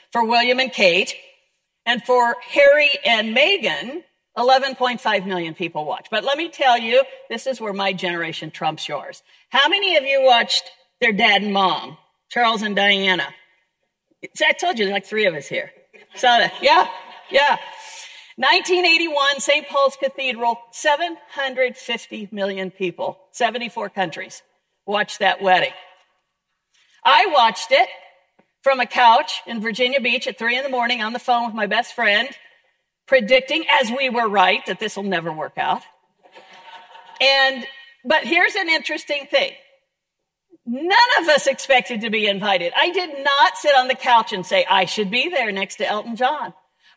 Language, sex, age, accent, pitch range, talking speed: English, female, 50-69, American, 185-270 Hz, 160 wpm